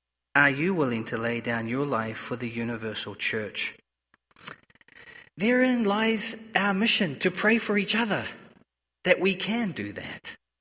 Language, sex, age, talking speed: English, male, 40-59, 145 wpm